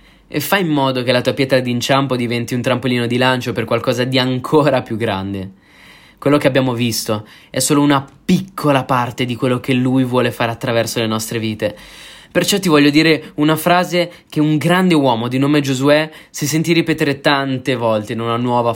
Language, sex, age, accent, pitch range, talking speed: Italian, male, 20-39, native, 115-145 Hz, 190 wpm